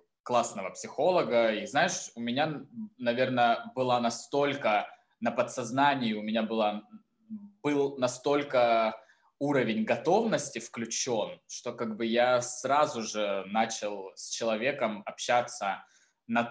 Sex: male